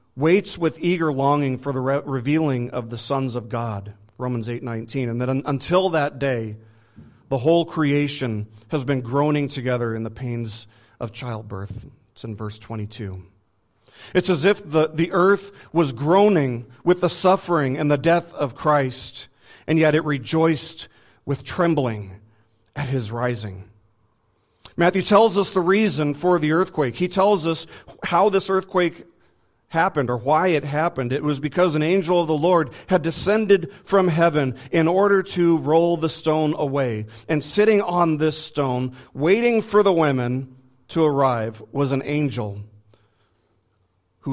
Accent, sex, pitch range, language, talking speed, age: American, male, 120-170 Hz, English, 155 wpm, 40-59